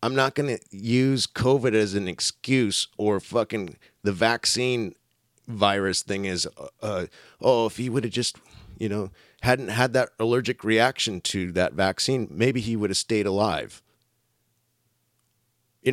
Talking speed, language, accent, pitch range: 150 wpm, English, American, 95-120 Hz